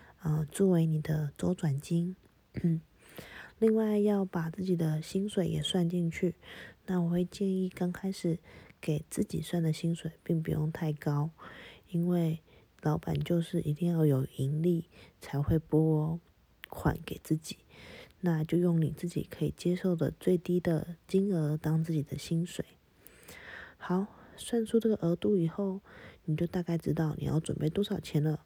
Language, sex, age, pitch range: Chinese, female, 20-39, 155-185 Hz